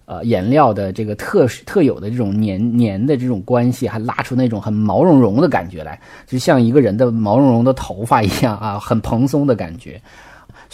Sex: male